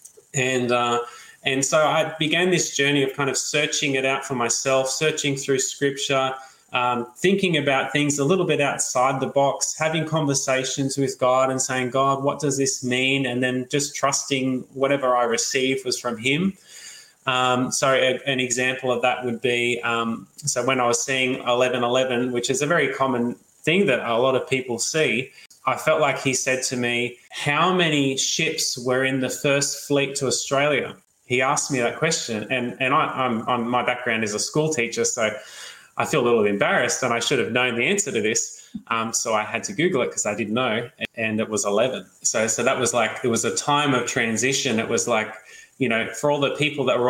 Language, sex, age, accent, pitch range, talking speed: English, male, 20-39, Australian, 120-140 Hz, 210 wpm